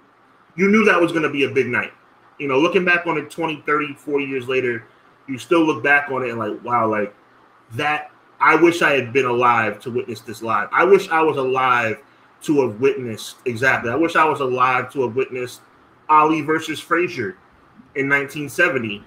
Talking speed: 200 wpm